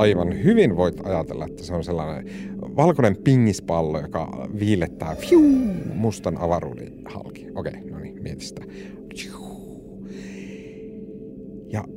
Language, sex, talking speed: Finnish, male, 115 wpm